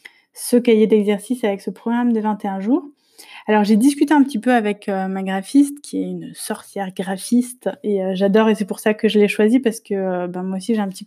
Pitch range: 190-215 Hz